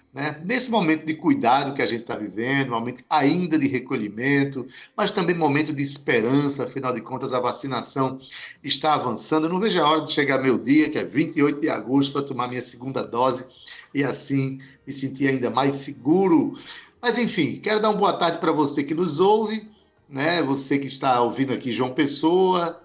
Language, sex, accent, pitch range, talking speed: Portuguese, male, Brazilian, 130-180 Hz, 185 wpm